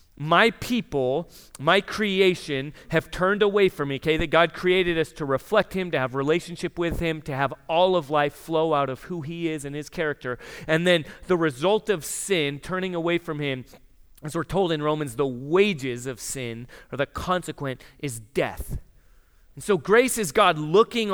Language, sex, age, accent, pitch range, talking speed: English, male, 30-49, American, 140-185 Hz, 185 wpm